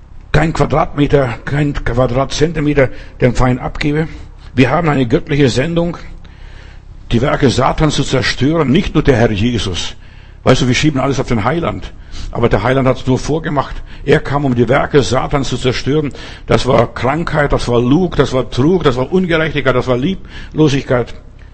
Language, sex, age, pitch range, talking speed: German, male, 60-79, 110-150 Hz, 165 wpm